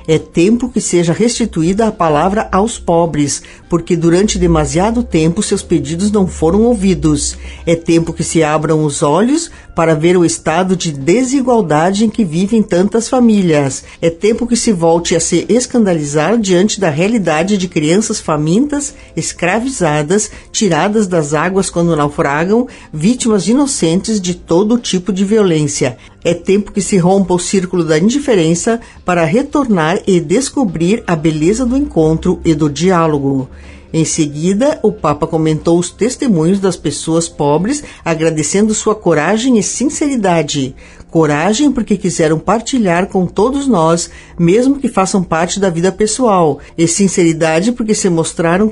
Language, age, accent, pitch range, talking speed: Portuguese, 50-69, Brazilian, 165-220 Hz, 145 wpm